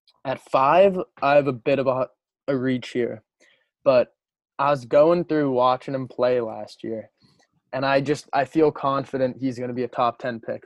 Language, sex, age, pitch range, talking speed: English, male, 20-39, 125-140 Hz, 195 wpm